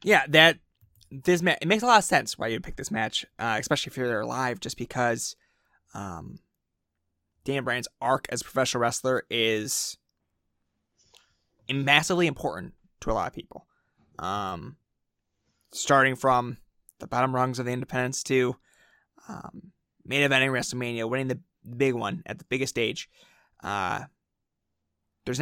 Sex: male